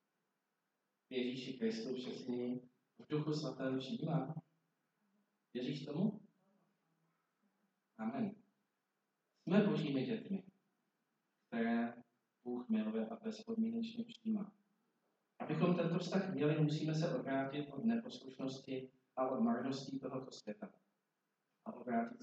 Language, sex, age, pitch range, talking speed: Czech, male, 40-59, 145-225 Hz, 90 wpm